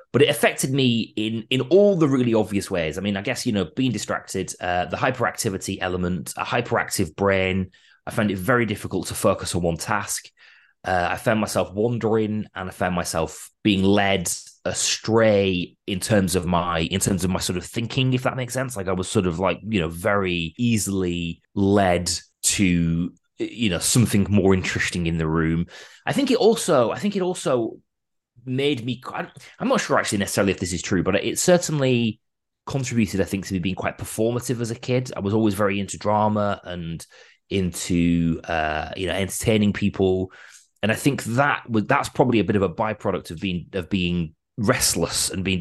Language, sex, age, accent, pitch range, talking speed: English, male, 20-39, British, 90-115 Hz, 195 wpm